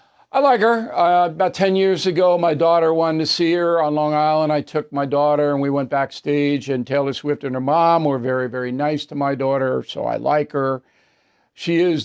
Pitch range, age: 140-165 Hz, 60-79